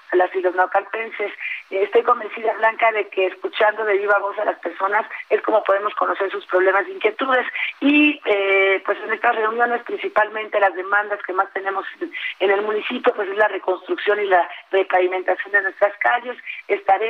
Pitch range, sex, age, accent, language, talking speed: 190-225 Hz, female, 40-59, Mexican, Spanish, 175 wpm